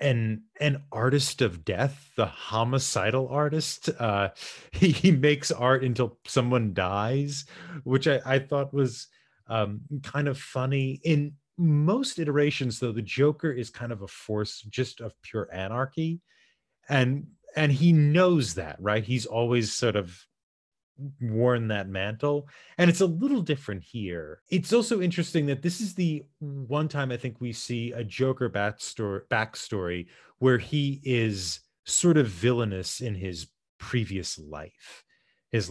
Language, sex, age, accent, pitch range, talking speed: English, male, 30-49, American, 100-145 Hz, 145 wpm